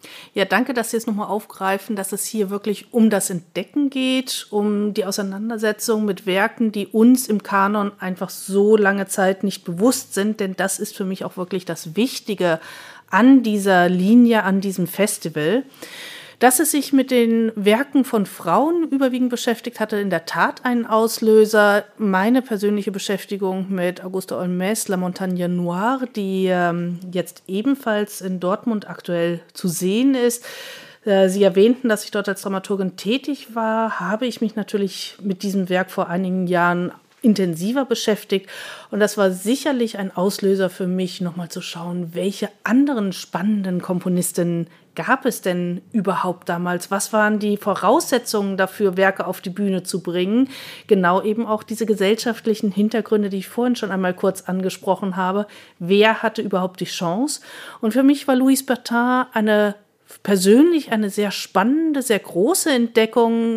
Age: 40-59